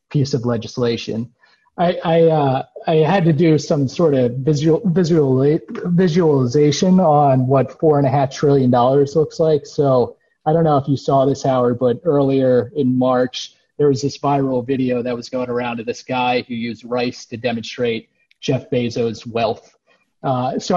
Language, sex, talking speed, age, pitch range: English, male, 175 wpm, 30-49, 125-160 Hz